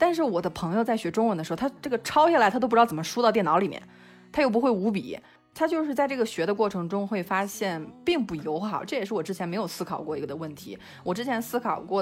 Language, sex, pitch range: Chinese, female, 170-225 Hz